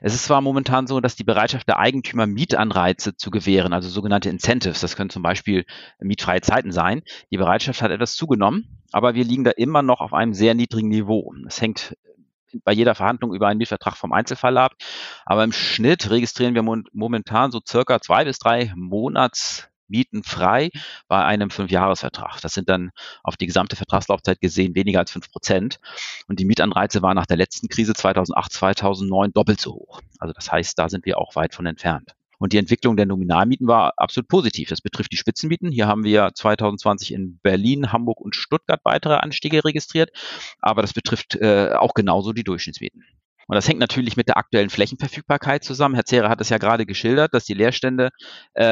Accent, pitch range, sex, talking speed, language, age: German, 95-120 Hz, male, 190 wpm, German, 40-59